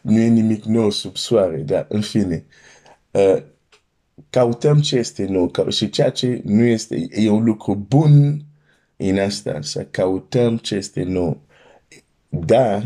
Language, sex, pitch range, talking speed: Romanian, male, 95-120 Hz, 140 wpm